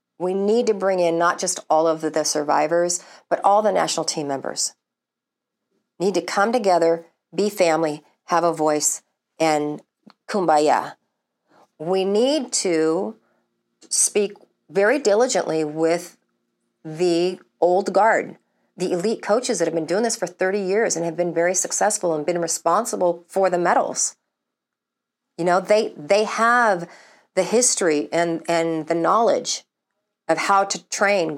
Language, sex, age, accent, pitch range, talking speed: English, female, 40-59, American, 165-195 Hz, 145 wpm